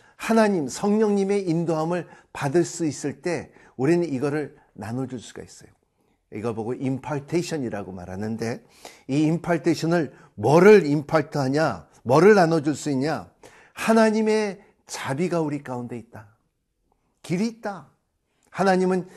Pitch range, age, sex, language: 135-195 Hz, 50-69, male, Korean